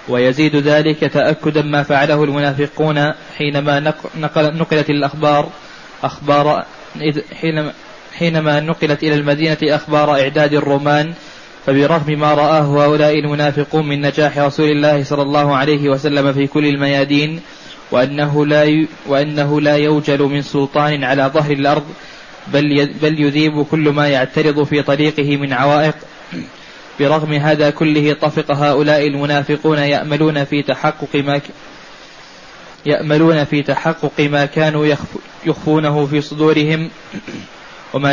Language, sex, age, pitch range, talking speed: Arabic, male, 20-39, 145-155 Hz, 105 wpm